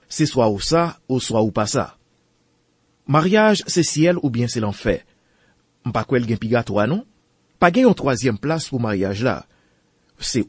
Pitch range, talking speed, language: 100-140 Hz, 160 wpm, French